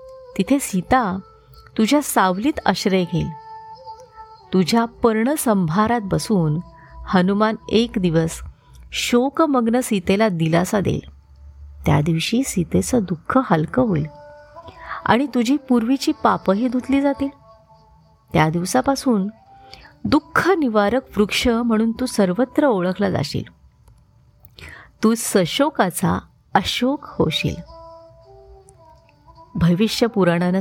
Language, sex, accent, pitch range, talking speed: Marathi, female, native, 175-255 Hz, 85 wpm